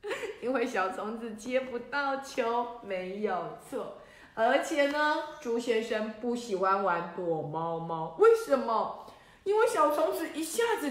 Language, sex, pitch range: Chinese, female, 205-280 Hz